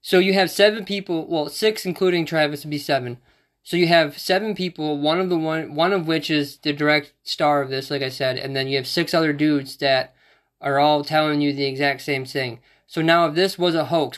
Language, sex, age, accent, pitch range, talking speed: English, male, 20-39, American, 140-170 Hz, 235 wpm